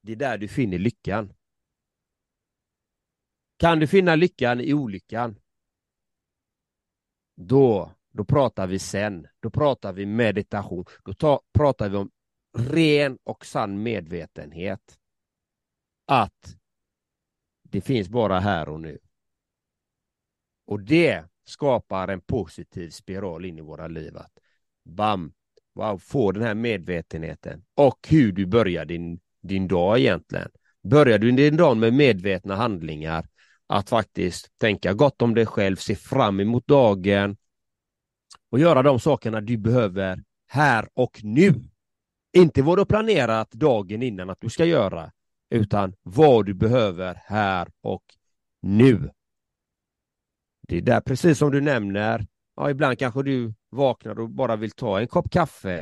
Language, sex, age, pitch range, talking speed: Swedish, male, 30-49, 95-130 Hz, 135 wpm